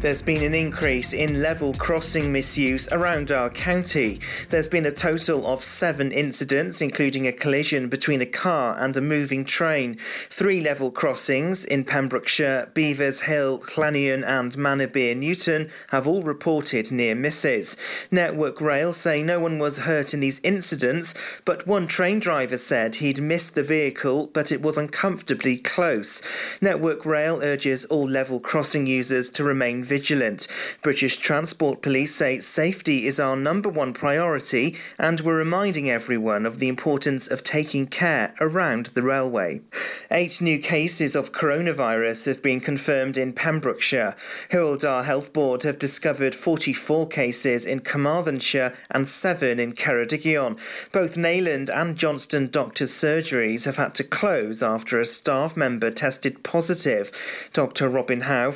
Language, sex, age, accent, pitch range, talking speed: English, male, 40-59, British, 130-160 Hz, 145 wpm